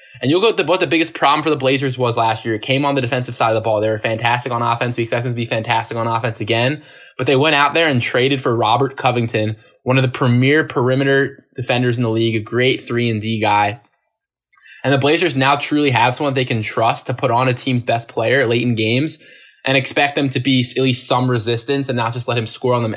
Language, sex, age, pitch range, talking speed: English, male, 20-39, 110-130 Hz, 255 wpm